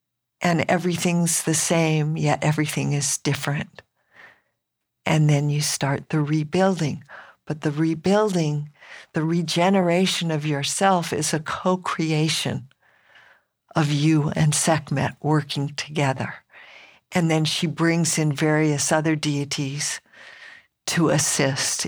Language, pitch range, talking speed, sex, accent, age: English, 150-175 Hz, 110 wpm, female, American, 60-79